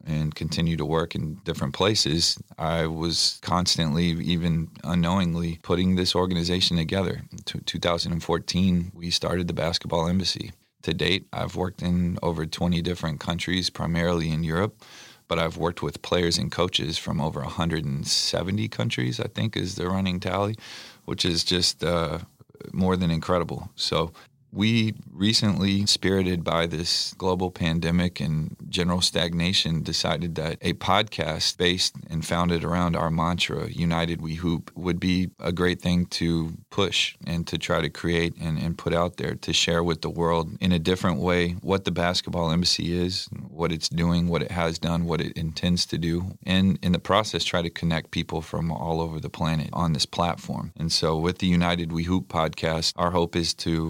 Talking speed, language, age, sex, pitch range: 175 wpm, English, 30-49, male, 80-90 Hz